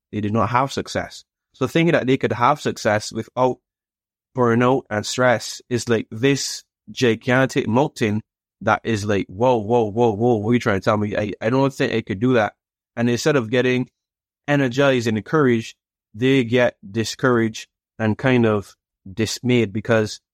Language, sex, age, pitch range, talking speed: English, male, 20-39, 105-130 Hz, 170 wpm